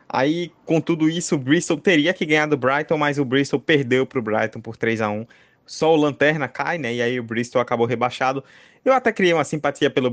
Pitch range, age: 125-155 Hz, 20-39